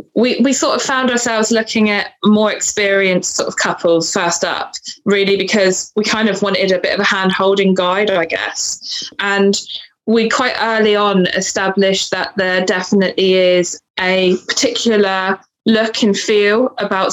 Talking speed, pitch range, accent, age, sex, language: 160 wpm, 195-230 Hz, British, 20-39, female, English